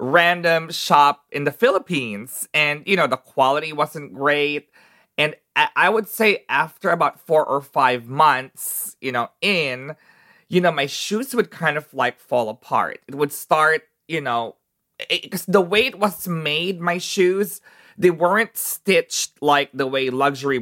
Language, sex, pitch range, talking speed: English, male, 140-195 Hz, 160 wpm